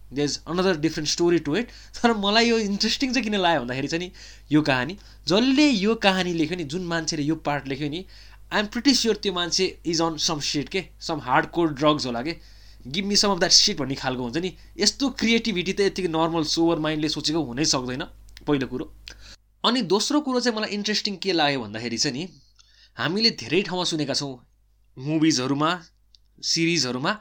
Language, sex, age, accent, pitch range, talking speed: English, male, 20-39, Indian, 150-200 Hz, 135 wpm